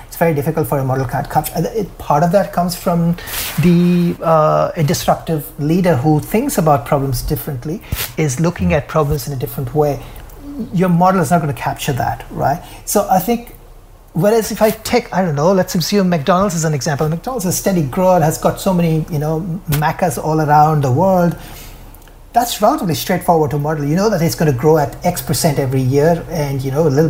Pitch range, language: 145-180 Hz, English